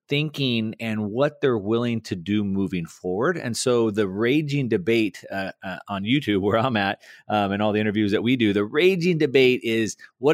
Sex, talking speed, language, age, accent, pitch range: male, 195 wpm, English, 30-49, American, 105-140 Hz